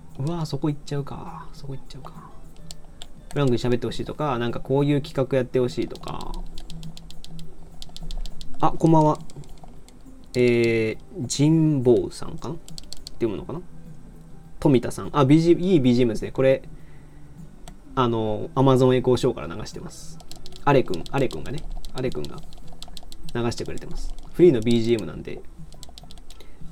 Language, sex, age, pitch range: Japanese, male, 20-39, 110-160 Hz